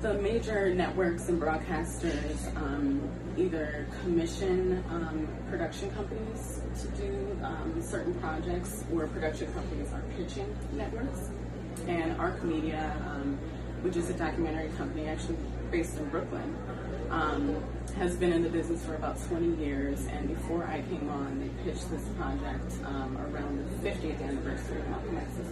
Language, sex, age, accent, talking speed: English, female, 30-49, American, 145 wpm